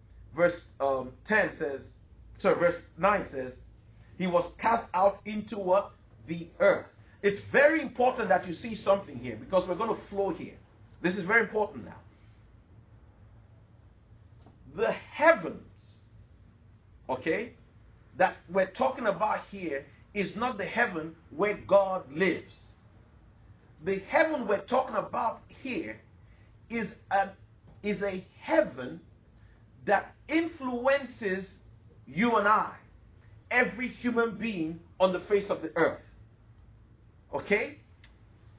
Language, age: English, 50-69